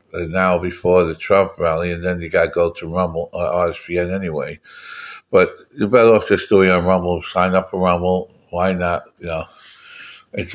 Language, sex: English, male